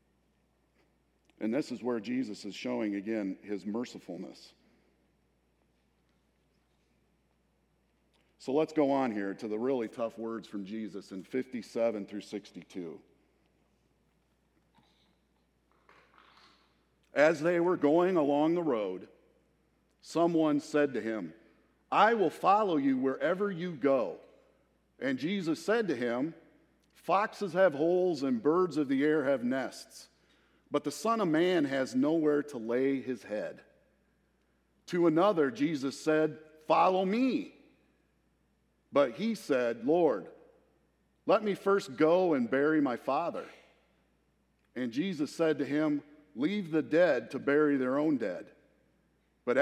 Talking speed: 125 wpm